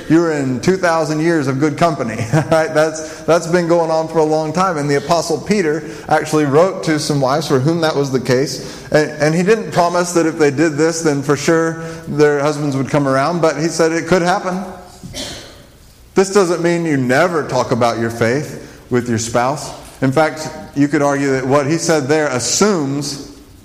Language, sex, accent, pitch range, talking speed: English, male, American, 125-160 Hz, 200 wpm